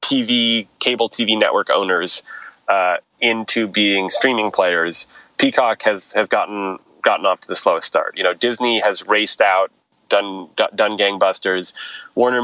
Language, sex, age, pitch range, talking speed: English, male, 30-49, 105-130 Hz, 145 wpm